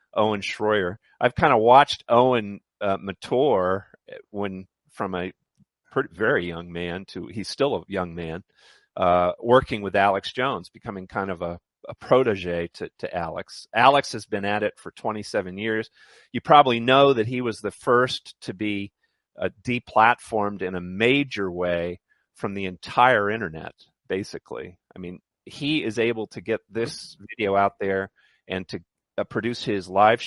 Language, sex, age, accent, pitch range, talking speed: English, male, 40-59, American, 95-115 Hz, 160 wpm